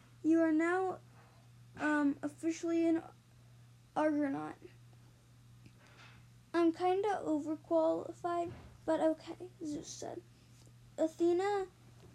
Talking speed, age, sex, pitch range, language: 80 wpm, 10-29, female, 290-330 Hz, English